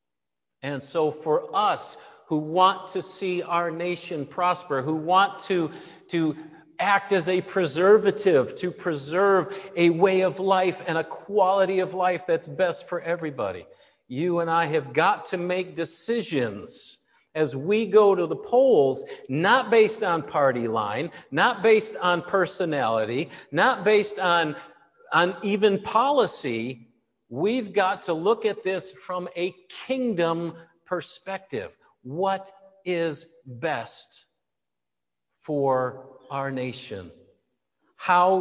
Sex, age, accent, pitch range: male, 50-69, American, 125-185 Hz